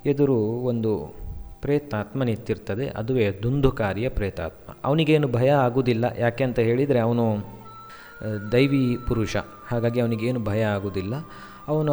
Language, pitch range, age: Kannada, 105-130 Hz, 20-39